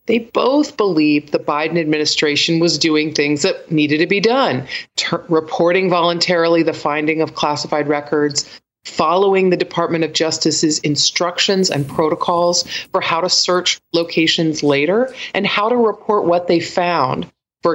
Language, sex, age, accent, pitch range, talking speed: English, female, 40-59, American, 145-175 Hz, 145 wpm